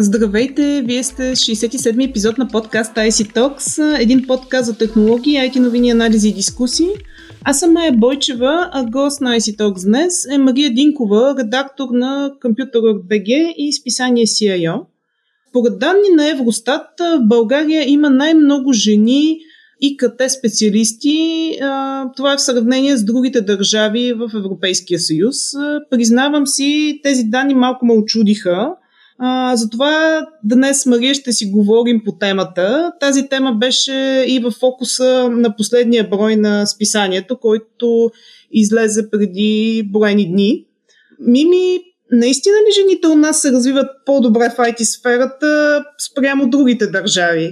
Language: Bulgarian